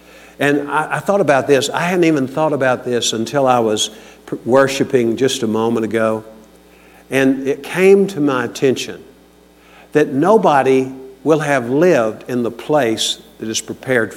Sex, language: male, English